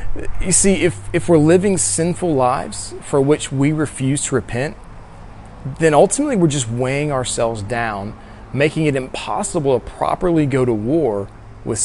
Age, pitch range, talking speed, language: 30-49, 120-170 Hz, 150 wpm, English